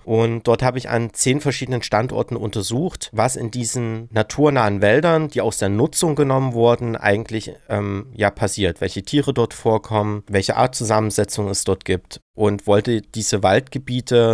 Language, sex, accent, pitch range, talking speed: German, male, German, 105-130 Hz, 160 wpm